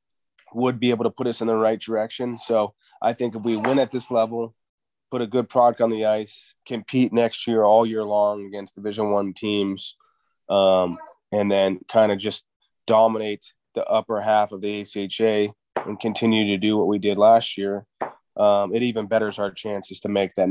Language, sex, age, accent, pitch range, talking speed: English, male, 30-49, American, 100-115 Hz, 195 wpm